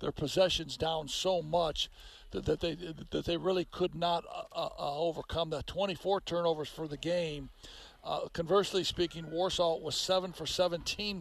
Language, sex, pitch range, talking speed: English, male, 155-180 Hz, 160 wpm